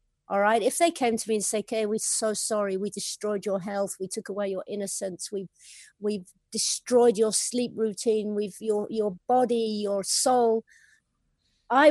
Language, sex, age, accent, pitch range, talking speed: English, female, 50-69, British, 200-245 Hz, 175 wpm